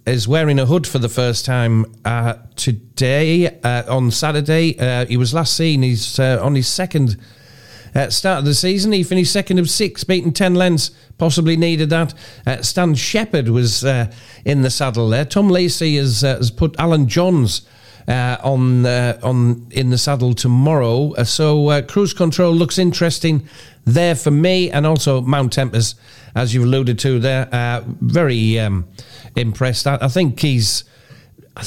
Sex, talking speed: male, 175 wpm